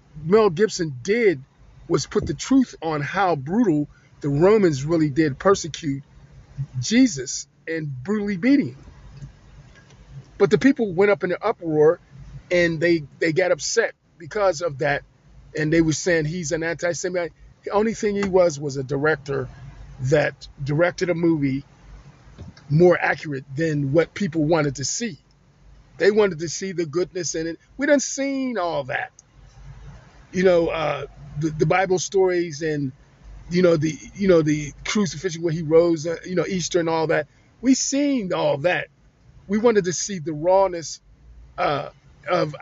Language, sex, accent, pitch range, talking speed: English, male, American, 140-190 Hz, 160 wpm